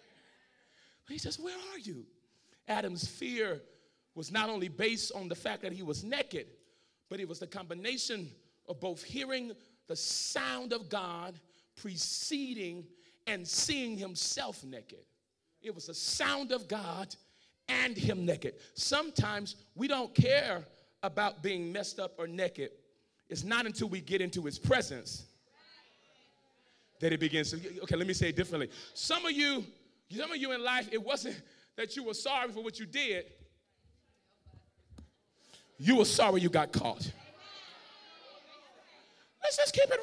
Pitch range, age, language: 180-285 Hz, 30-49, English